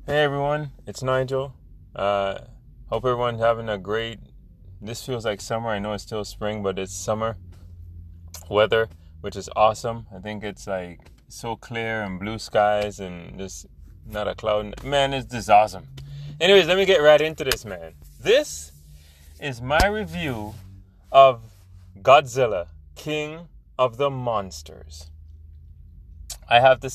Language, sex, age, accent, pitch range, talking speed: English, male, 20-39, American, 95-135 Hz, 145 wpm